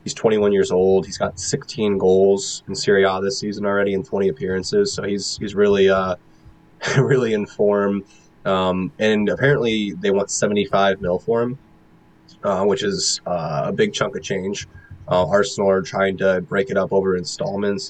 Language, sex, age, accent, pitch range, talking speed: English, male, 20-39, American, 95-105 Hz, 180 wpm